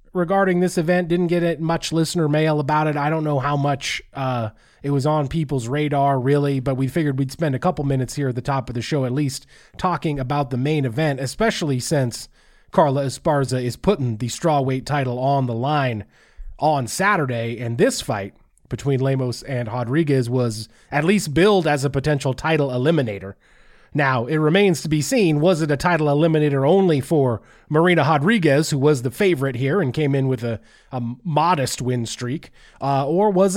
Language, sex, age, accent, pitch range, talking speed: English, male, 30-49, American, 125-175 Hz, 190 wpm